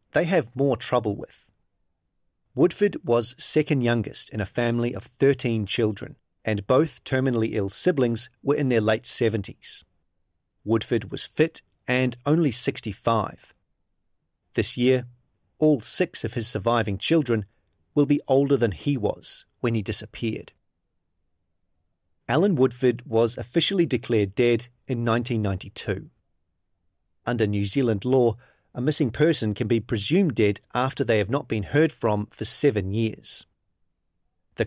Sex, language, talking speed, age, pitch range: male, English, 135 wpm, 40-59, 105-130 Hz